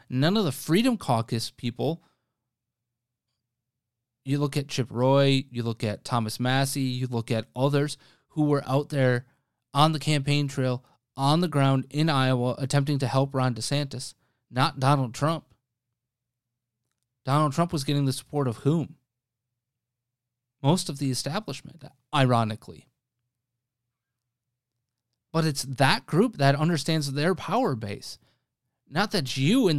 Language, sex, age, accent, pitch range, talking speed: English, male, 30-49, American, 125-155 Hz, 135 wpm